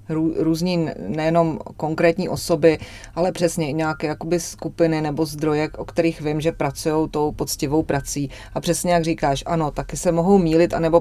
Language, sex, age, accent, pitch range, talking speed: Czech, female, 30-49, native, 140-165 Hz, 165 wpm